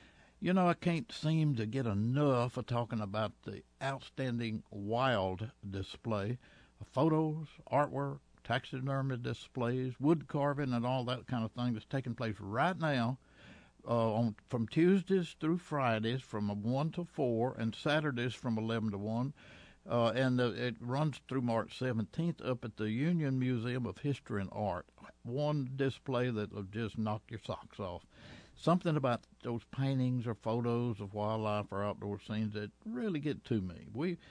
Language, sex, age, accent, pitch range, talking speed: English, male, 60-79, American, 110-145 Hz, 155 wpm